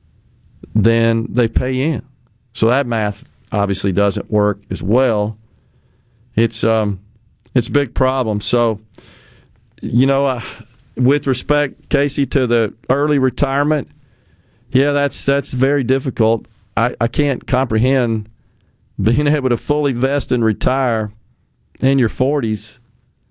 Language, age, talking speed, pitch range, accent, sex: English, 40-59, 125 wpm, 110-130 Hz, American, male